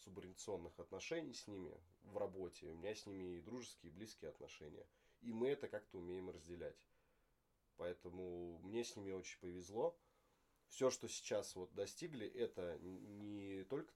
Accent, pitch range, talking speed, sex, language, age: native, 90-115 Hz, 150 wpm, male, Russian, 20-39